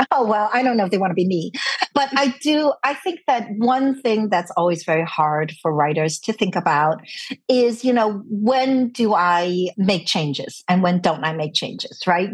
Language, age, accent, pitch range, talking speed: English, 50-69, American, 175-230 Hz, 210 wpm